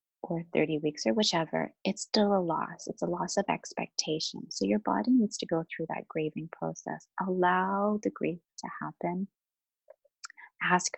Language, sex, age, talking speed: English, female, 30-49, 165 wpm